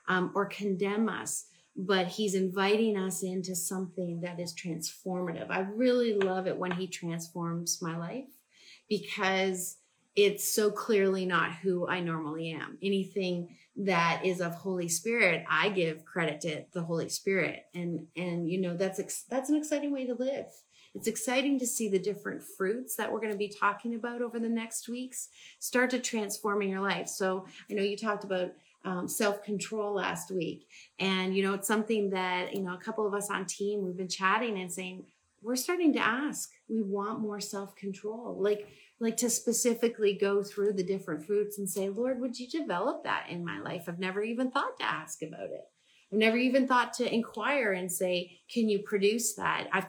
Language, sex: English, female